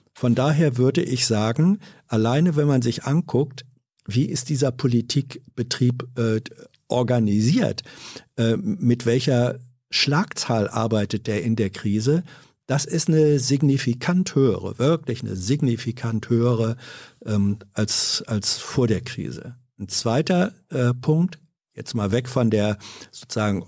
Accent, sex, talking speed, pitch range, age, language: German, male, 125 wpm, 110-140 Hz, 50-69, German